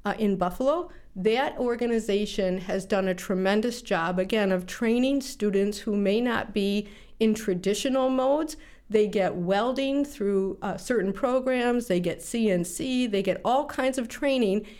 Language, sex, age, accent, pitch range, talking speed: English, female, 50-69, American, 195-245 Hz, 150 wpm